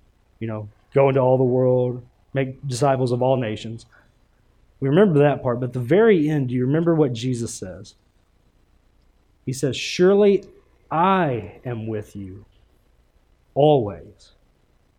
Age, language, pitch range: 30-49, English, 115-150 Hz